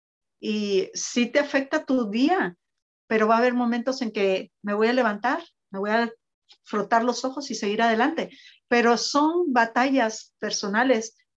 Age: 50-69